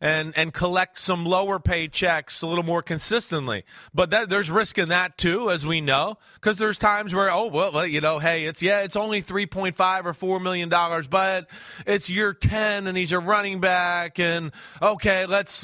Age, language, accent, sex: 30-49, English, American, male